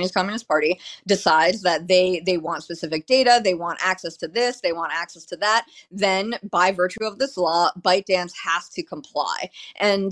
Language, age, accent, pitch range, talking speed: English, 30-49, American, 175-210 Hz, 185 wpm